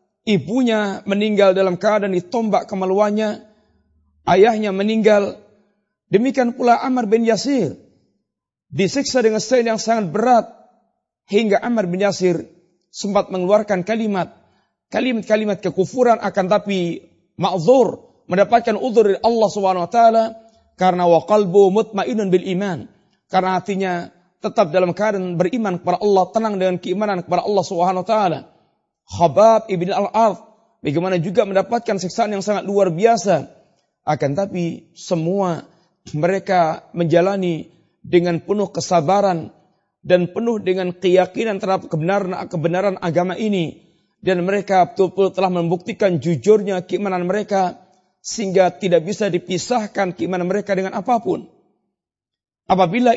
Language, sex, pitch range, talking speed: Malay, male, 180-215 Hz, 115 wpm